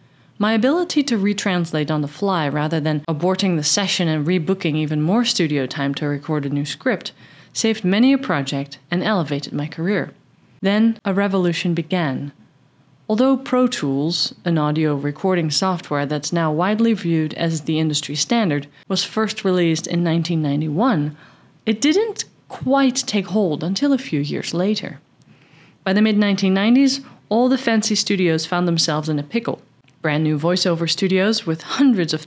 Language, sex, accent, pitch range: English, female, American, 155-210 Hz